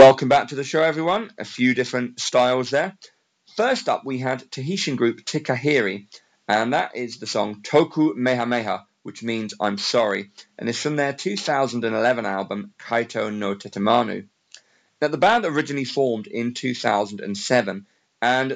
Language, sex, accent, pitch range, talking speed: English, male, British, 105-135 Hz, 150 wpm